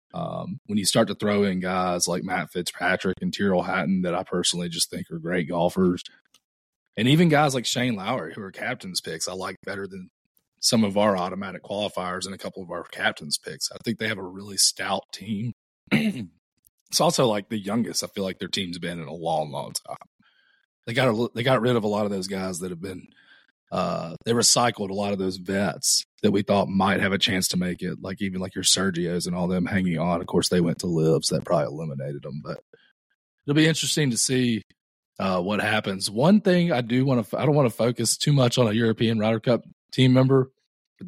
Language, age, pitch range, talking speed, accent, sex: English, 30-49, 95-125 Hz, 230 wpm, American, male